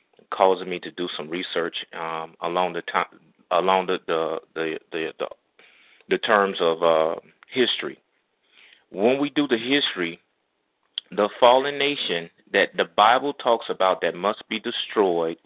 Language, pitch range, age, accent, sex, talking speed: English, 90-115 Hz, 30-49, American, male, 120 wpm